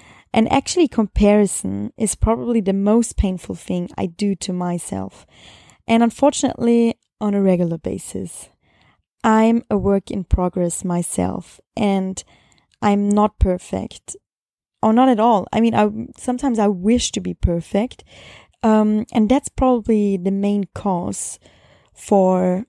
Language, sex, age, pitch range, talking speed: English, female, 20-39, 190-235 Hz, 130 wpm